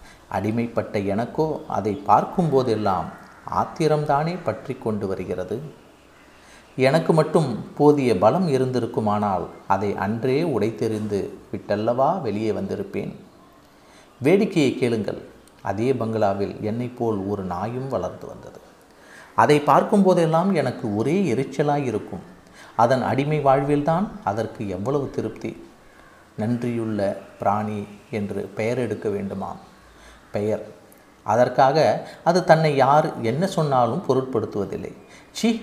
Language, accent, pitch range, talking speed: Tamil, native, 110-150 Hz, 90 wpm